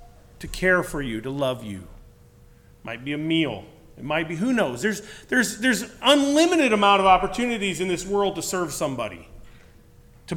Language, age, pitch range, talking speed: English, 40-59, 140-200 Hz, 180 wpm